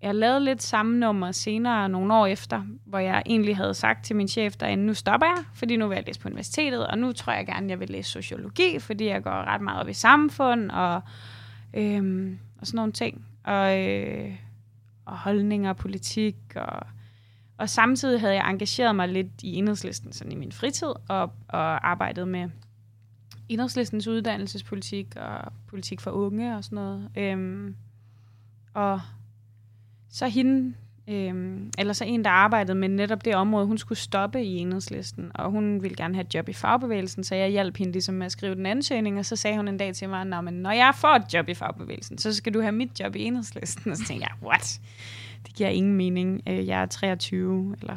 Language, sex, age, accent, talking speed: Danish, female, 20-39, native, 200 wpm